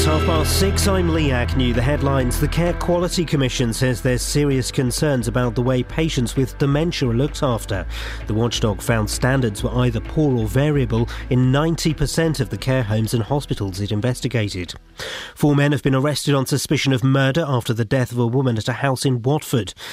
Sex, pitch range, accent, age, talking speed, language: male, 115-145 Hz, British, 40-59, 195 wpm, English